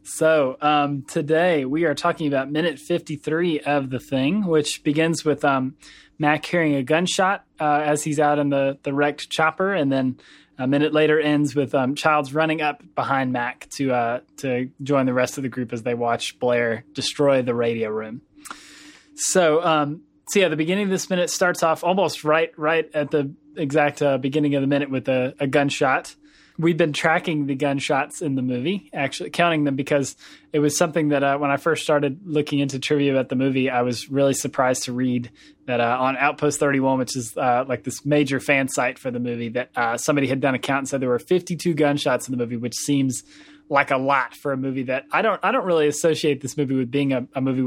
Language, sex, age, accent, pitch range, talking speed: English, male, 20-39, American, 130-155 Hz, 215 wpm